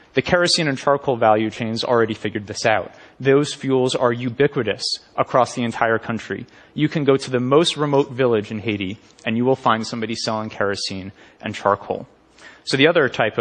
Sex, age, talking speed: male, 30-49, 185 wpm